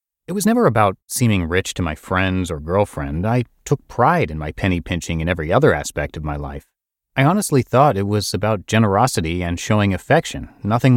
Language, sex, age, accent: English, male, 30-49, American